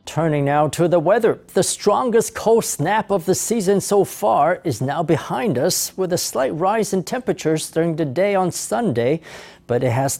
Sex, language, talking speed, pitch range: male, English, 190 wpm, 150-190 Hz